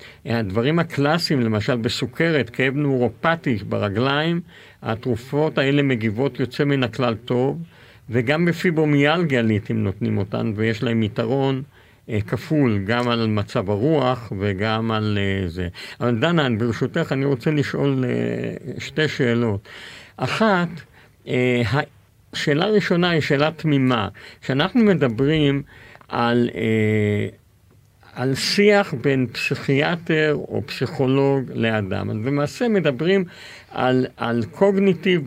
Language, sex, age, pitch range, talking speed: Hebrew, male, 50-69, 115-155 Hz, 110 wpm